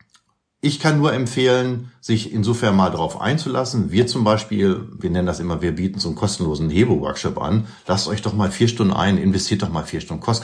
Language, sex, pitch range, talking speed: German, male, 100-125 Hz, 205 wpm